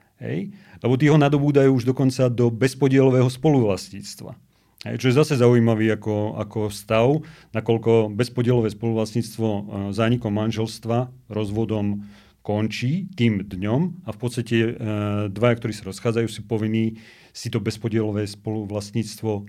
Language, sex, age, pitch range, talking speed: Slovak, male, 40-59, 105-130 Hz, 120 wpm